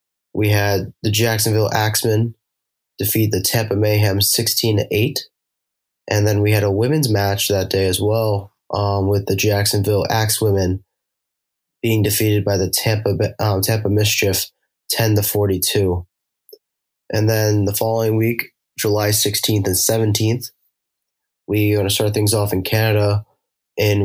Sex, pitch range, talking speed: male, 100-110 Hz, 140 wpm